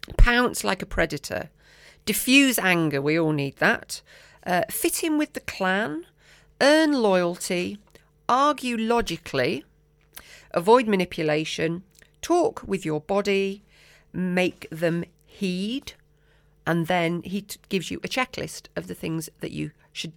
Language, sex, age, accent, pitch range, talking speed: English, female, 40-59, British, 160-215 Hz, 125 wpm